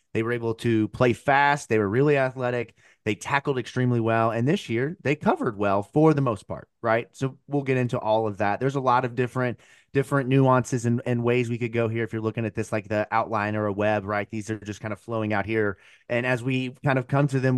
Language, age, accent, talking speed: English, 30-49, American, 255 wpm